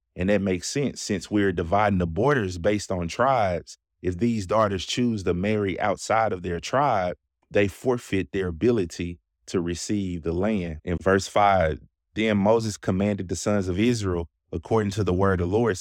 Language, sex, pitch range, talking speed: English, male, 90-110 Hz, 180 wpm